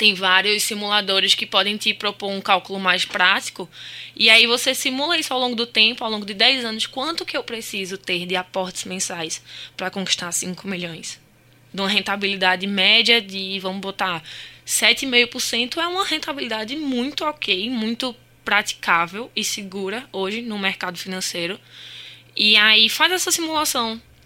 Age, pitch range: 10-29, 195-245 Hz